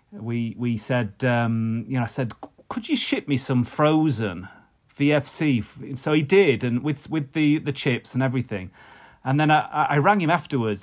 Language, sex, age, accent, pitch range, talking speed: English, male, 30-49, British, 110-135 Hz, 185 wpm